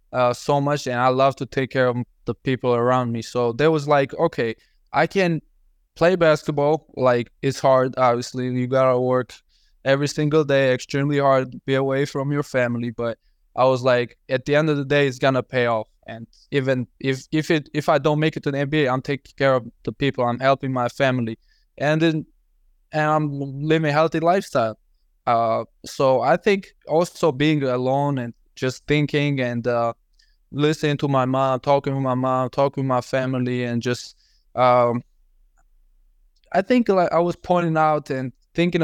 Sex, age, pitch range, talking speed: male, 20-39, 125-145 Hz, 185 wpm